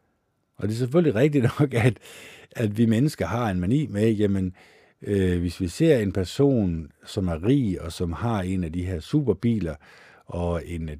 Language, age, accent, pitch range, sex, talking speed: Danish, 60-79, native, 90-120 Hz, male, 185 wpm